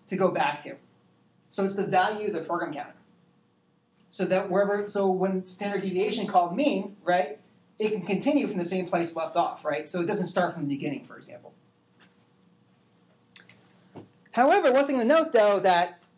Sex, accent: male, American